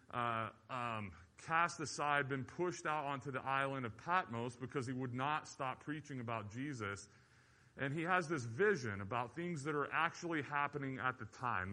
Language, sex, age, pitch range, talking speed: English, male, 30-49, 120-150 Hz, 175 wpm